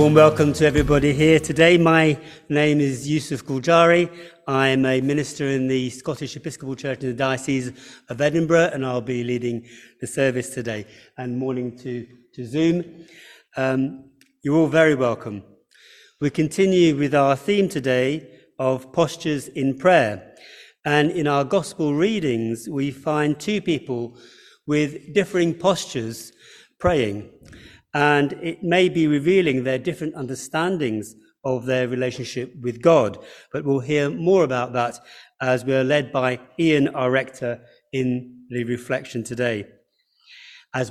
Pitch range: 130-165 Hz